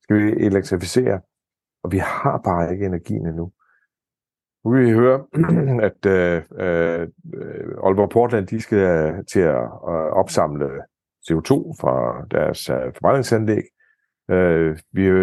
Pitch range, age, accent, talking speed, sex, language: 90-110 Hz, 60-79, native, 105 wpm, male, Danish